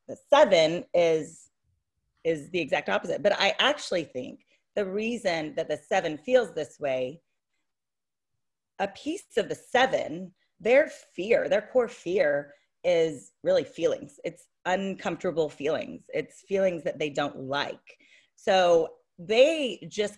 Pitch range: 155-235 Hz